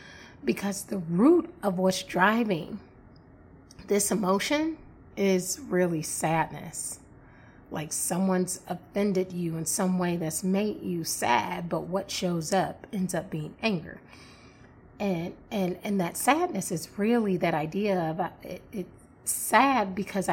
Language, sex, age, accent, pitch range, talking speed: English, female, 30-49, American, 180-230 Hz, 130 wpm